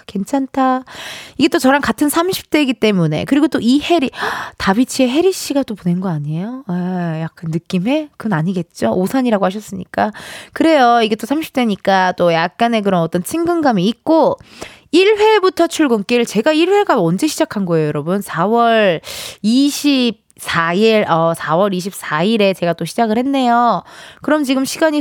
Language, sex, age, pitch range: Korean, female, 20-39, 190-290 Hz